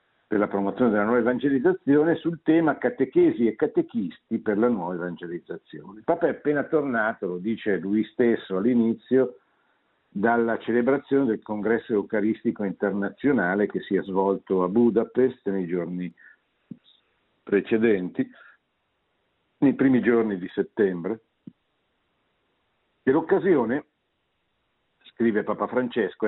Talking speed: 110 wpm